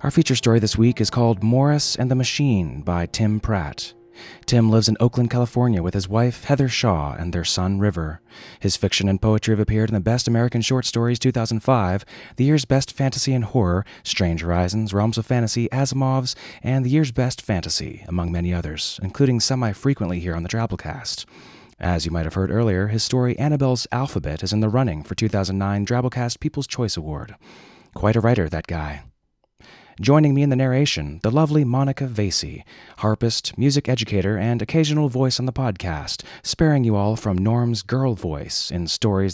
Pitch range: 95-125 Hz